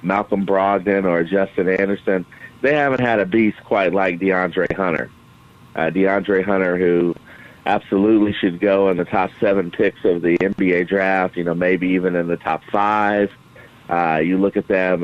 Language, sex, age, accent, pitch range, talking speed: English, male, 40-59, American, 90-105 Hz, 170 wpm